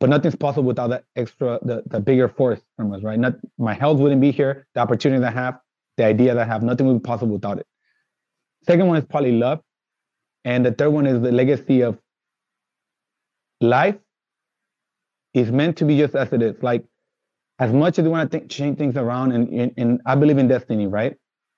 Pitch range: 120-145 Hz